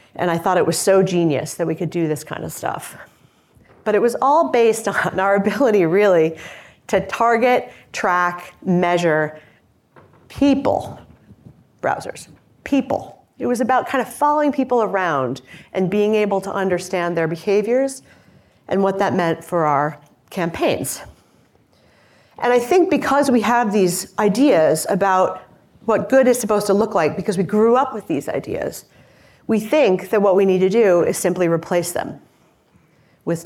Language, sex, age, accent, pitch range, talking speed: English, female, 40-59, American, 170-225 Hz, 160 wpm